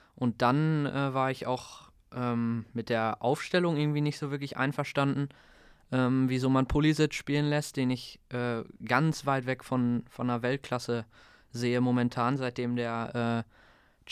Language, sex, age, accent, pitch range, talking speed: German, male, 20-39, German, 120-140 Hz, 155 wpm